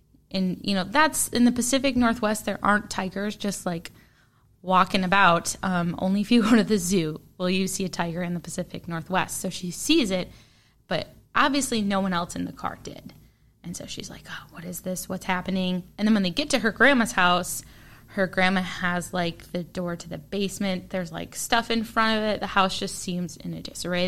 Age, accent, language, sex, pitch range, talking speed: 10-29, American, English, female, 175-210 Hz, 215 wpm